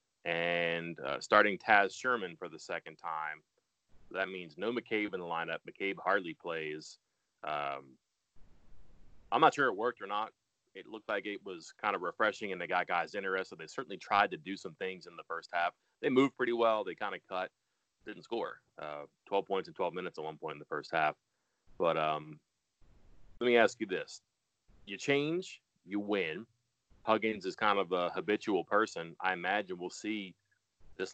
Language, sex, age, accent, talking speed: English, male, 30-49, American, 190 wpm